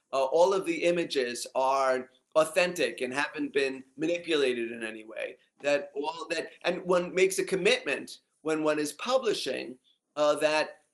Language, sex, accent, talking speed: English, male, American, 155 wpm